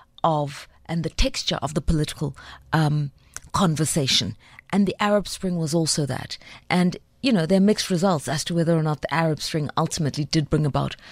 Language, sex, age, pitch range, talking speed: English, female, 50-69, 150-185 Hz, 190 wpm